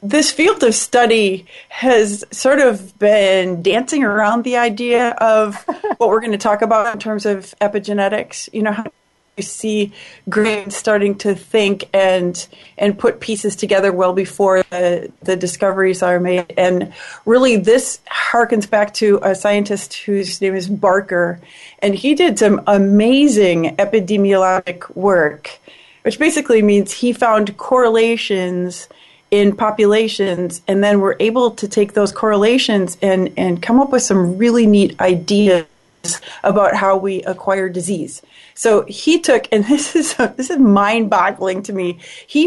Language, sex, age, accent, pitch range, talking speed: English, female, 30-49, American, 190-230 Hz, 150 wpm